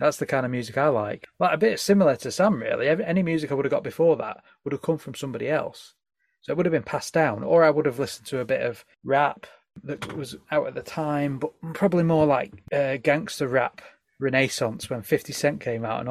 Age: 30-49